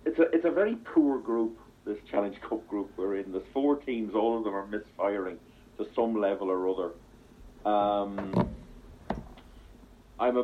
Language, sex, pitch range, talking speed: English, male, 95-115 Hz, 165 wpm